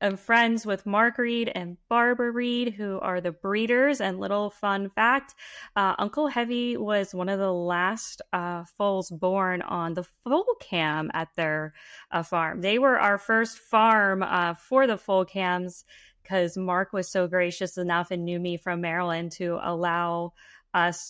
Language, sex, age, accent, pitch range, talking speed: English, female, 20-39, American, 180-240 Hz, 170 wpm